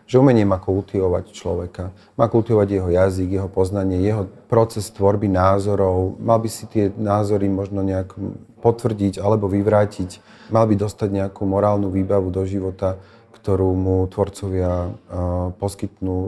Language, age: Slovak, 40-59